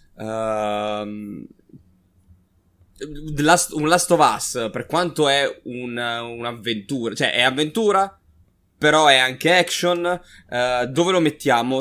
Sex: male